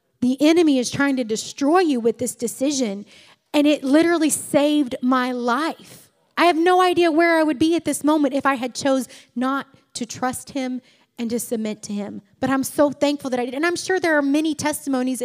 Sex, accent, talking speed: female, American, 215 wpm